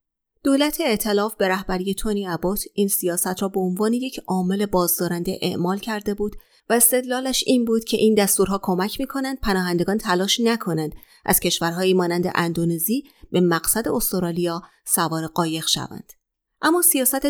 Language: Persian